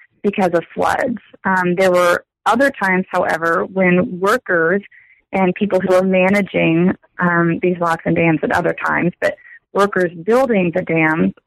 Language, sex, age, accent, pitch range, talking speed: English, female, 30-49, American, 175-210 Hz, 150 wpm